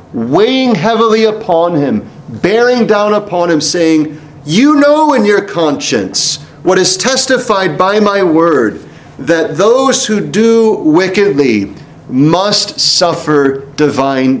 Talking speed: 115 wpm